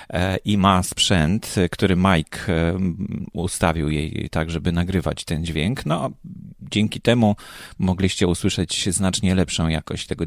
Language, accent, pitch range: Polish, native, 80-100 Hz